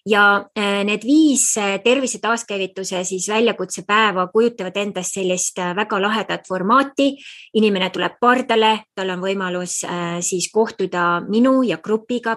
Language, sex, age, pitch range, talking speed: English, female, 20-39, 180-220 Hz, 120 wpm